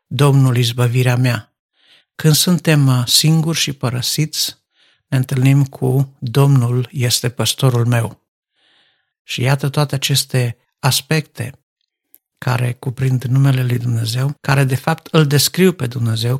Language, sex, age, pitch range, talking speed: Romanian, male, 60-79, 120-140 Hz, 115 wpm